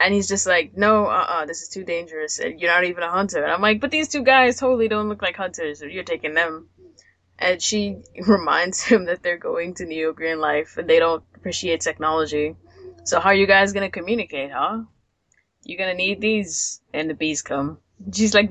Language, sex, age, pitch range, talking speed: English, female, 10-29, 150-200 Hz, 215 wpm